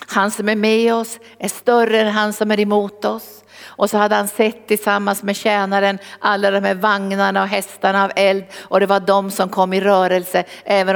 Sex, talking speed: female, 210 wpm